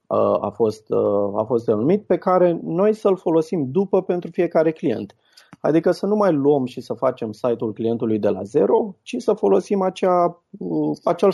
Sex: male